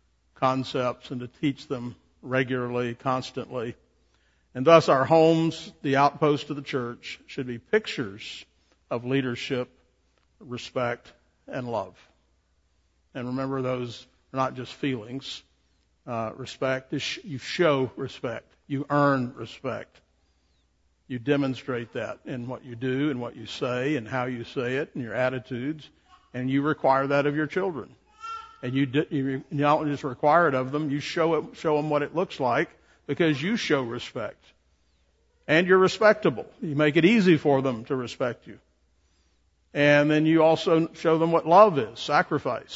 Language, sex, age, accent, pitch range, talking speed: English, male, 60-79, American, 120-155 Hz, 155 wpm